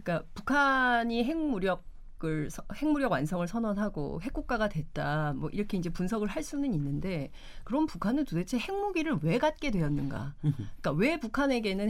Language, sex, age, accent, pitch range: Korean, female, 30-49, native, 165-255 Hz